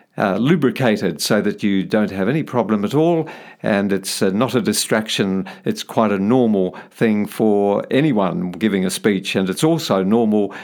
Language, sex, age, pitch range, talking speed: English, male, 50-69, 105-155 Hz, 175 wpm